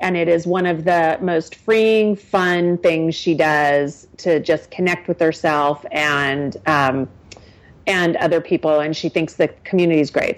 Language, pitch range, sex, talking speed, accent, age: English, 155-205 Hz, female, 170 wpm, American, 40-59